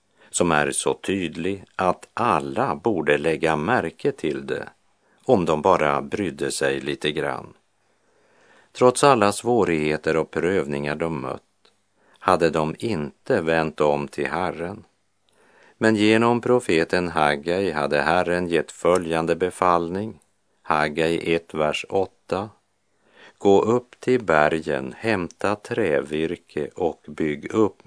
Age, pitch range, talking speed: 50-69, 75-100 Hz, 115 wpm